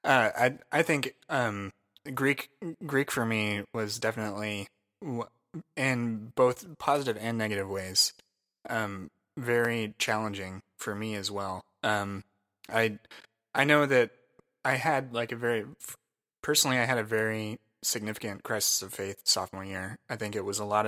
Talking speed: 145 wpm